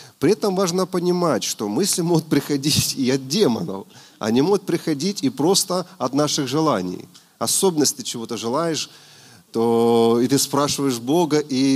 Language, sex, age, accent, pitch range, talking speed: Russian, male, 30-49, native, 115-165 Hz, 155 wpm